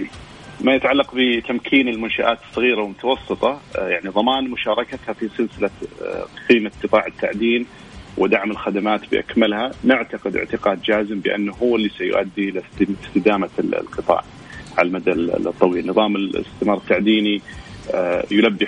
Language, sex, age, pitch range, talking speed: Arabic, male, 30-49, 100-115 Hz, 110 wpm